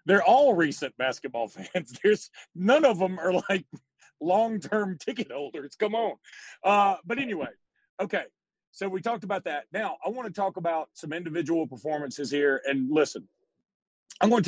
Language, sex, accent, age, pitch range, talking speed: English, male, American, 40-59, 145-185 Hz, 165 wpm